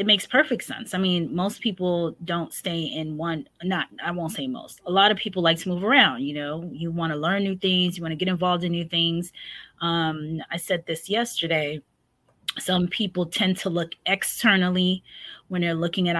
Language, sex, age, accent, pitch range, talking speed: English, female, 20-39, American, 155-185 Hz, 210 wpm